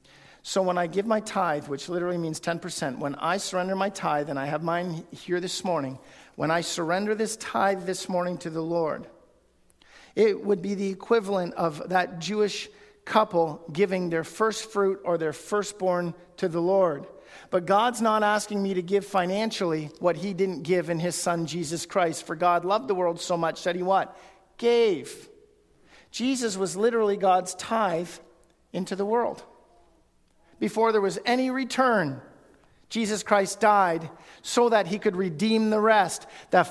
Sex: male